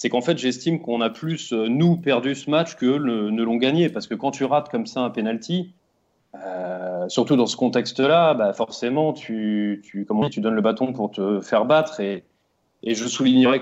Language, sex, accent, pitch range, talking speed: French, male, French, 115-150 Hz, 210 wpm